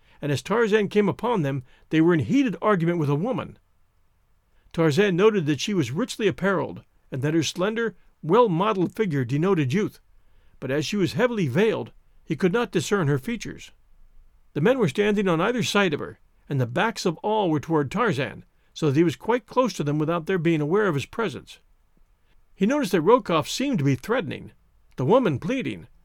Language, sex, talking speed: English, male, 195 wpm